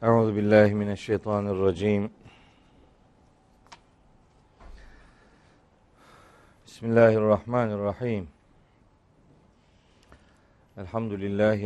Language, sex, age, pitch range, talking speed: Turkish, male, 50-69, 95-110 Hz, 55 wpm